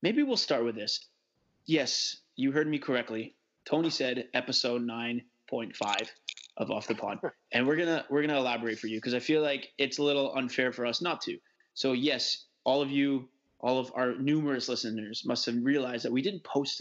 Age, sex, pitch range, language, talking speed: 20-39, male, 125-145 Hz, English, 205 wpm